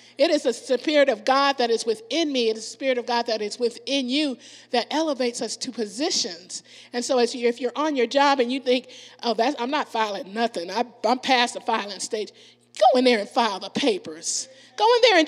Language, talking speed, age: English, 220 wpm, 40-59